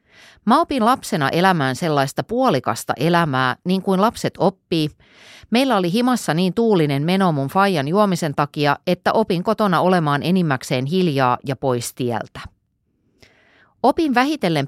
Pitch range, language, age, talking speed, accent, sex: 135-195 Hz, Finnish, 30-49, 130 wpm, native, female